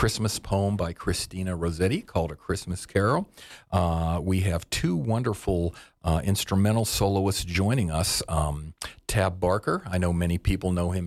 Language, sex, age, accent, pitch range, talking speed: English, male, 40-59, American, 80-100 Hz, 150 wpm